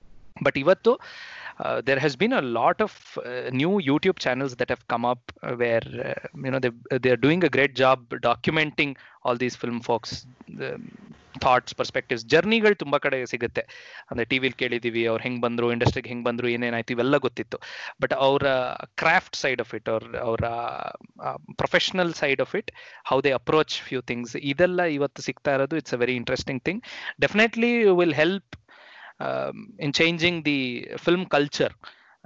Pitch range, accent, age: 125-160 Hz, native, 20-39